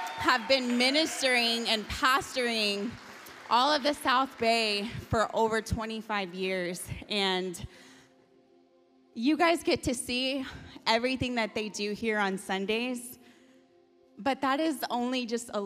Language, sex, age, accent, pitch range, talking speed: English, female, 20-39, American, 190-260 Hz, 125 wpm